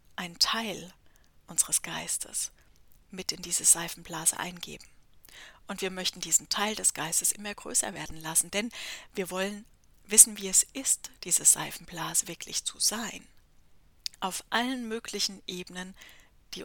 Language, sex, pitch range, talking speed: German, female, 175-210 Hz, 135 wpm